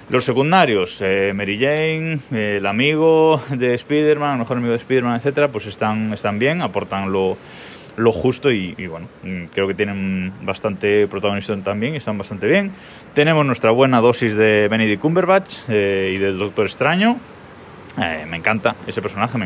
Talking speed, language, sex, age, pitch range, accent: 165 wpm, Spanish, male, 20-39, 105-135 Hz, Spanish